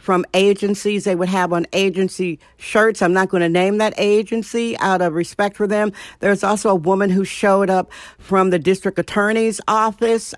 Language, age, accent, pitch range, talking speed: English, 50-69, American, 180-220 Hz, 185 wpm